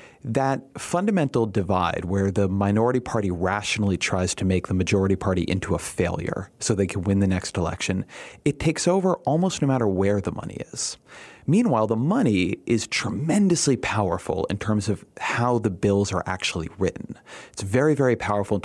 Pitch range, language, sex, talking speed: 95-120 Hz, English, male, 175 wpm